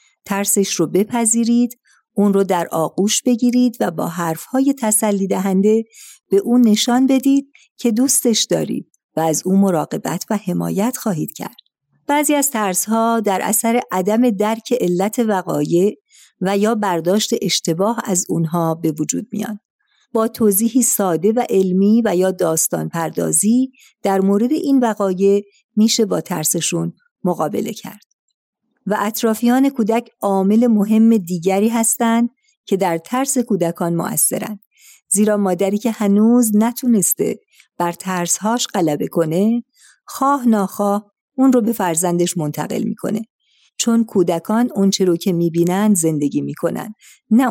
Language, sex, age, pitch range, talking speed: Persian, female, 50-69, 185-235 Hz, 130 wpm